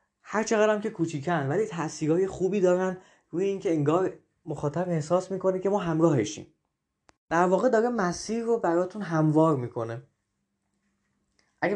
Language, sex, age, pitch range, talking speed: Persian, male, 20-39, 140-180 Hz, 140 wpm